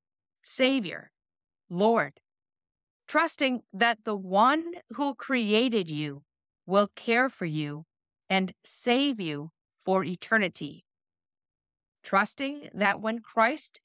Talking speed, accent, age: 95 wpm, American, 50-69